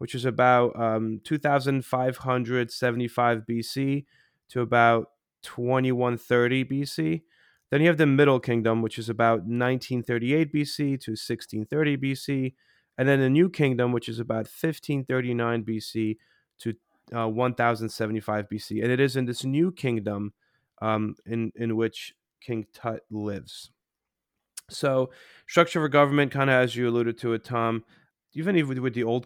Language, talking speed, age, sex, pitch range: English, 140 wpm, 30-49, male, 115-135 Hz